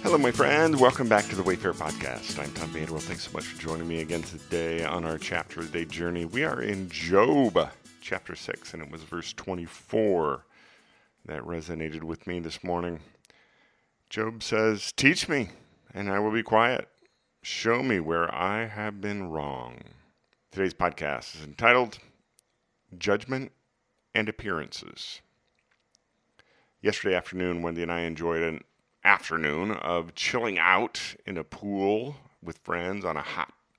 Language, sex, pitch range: English, male, 80-100 Hz